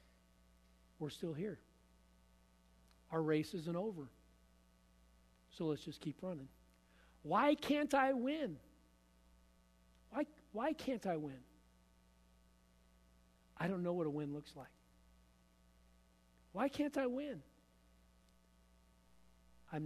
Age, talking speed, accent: 50-69, 105 wpm, American